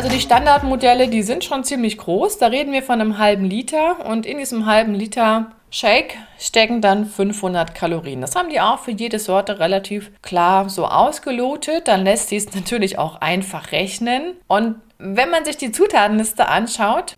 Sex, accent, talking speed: female, German, 180 wpm